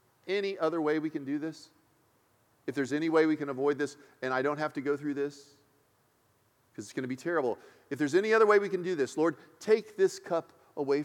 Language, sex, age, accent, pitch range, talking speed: English, male, 40-59, American, 140-195 Hz, 235 wpm